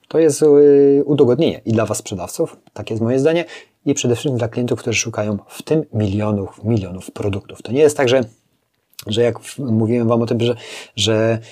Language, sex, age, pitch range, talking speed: Polish, male, 30-49, 105-120 Hz, 190 wpm